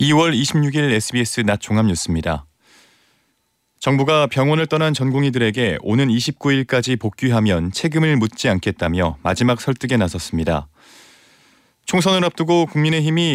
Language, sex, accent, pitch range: Korean, male, native, 95-145 Hz